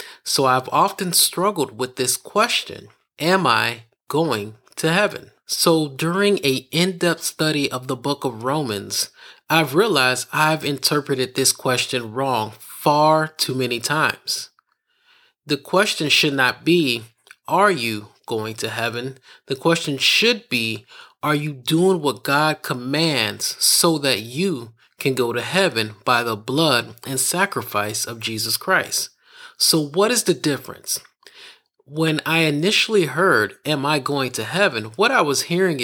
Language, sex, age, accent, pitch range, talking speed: English, male, 30-49, American, 125-165 Hz, 145 wpm